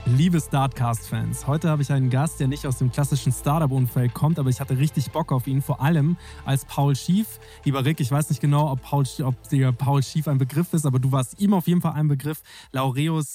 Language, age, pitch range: German, 20-39, 135-155 Hz